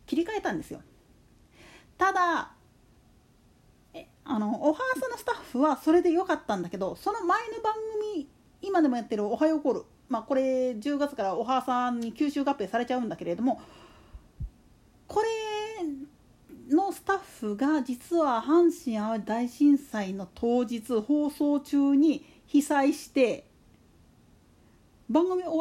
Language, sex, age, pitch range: Japanese, female, 40-59, 245-345 Hz